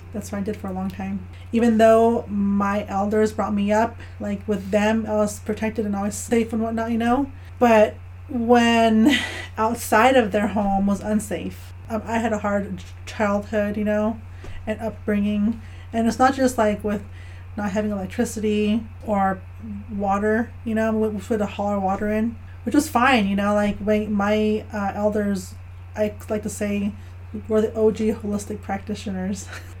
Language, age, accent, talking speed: English, 30-49, American, 170 wpm